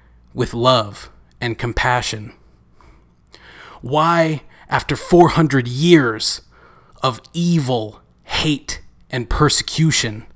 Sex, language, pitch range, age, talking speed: male, English, 115-145 Hz, 30-49, 75 wpm